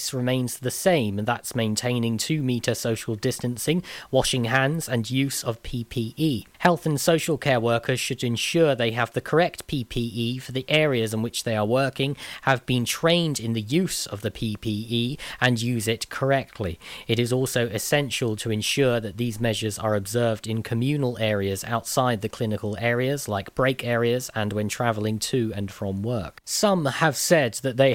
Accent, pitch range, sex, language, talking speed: British, 110-135 Hz, male, English, 175 wpm